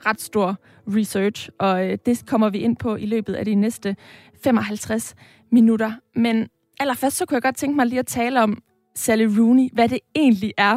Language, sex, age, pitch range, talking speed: Danish, female, 20-39, 205-240 Hz, 195 wpm